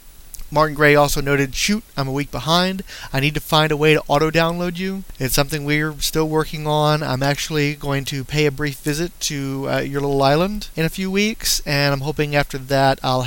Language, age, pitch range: English, 30-49, 135-155 Hz